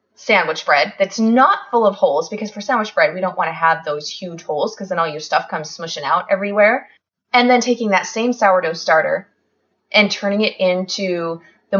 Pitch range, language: 180-240 Hz, English